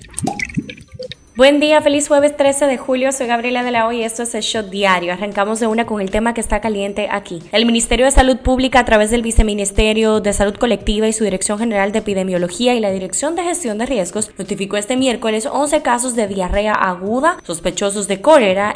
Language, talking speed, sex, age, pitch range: Spanish, 205 wpm, female, 10-29, 200-260 Hz